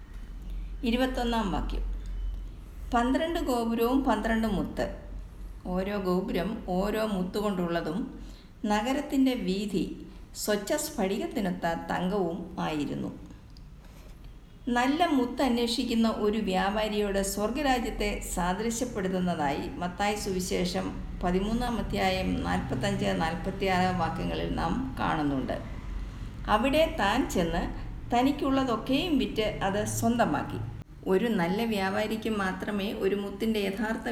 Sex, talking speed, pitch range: female, 80 wpm, 185-235 Hz